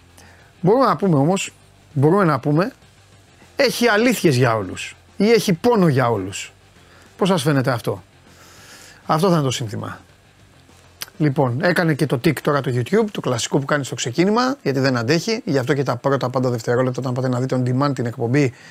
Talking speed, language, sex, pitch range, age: 185 wpm, Greek, male, 130-175 Hz, 30-49